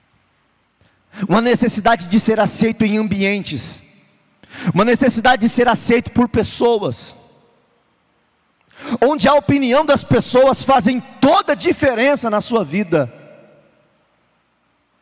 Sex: male